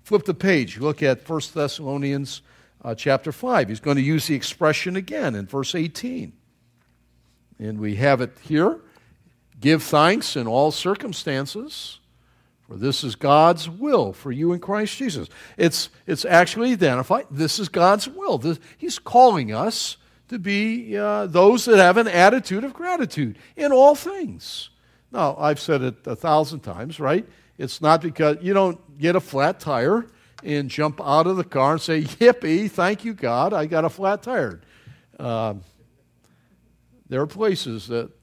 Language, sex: English, male